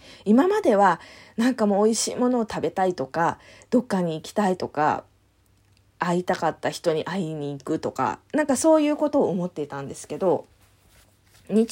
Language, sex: Japanese, female